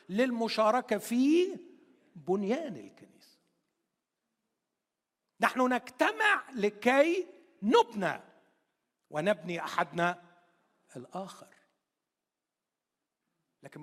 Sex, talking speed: male, 50 wpm